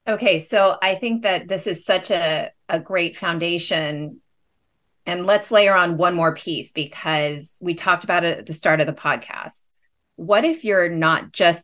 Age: 30-49